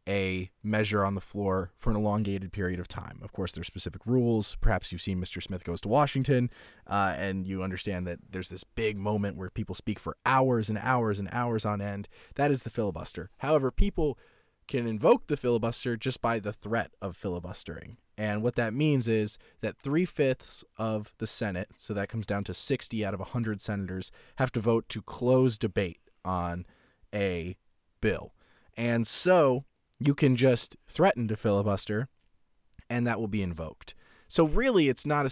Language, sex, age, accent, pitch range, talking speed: English, male, 20-39, American, 95-120 Hz, 180 wpm